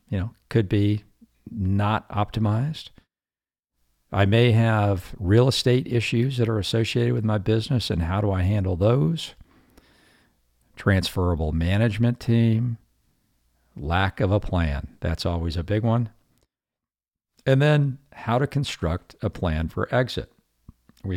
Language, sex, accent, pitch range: English, male, American, 90-115 Hz